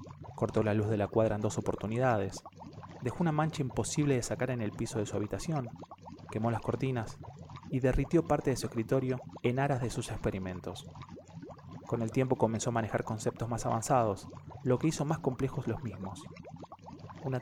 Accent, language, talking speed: Argentinian, Spanish, 180 wpm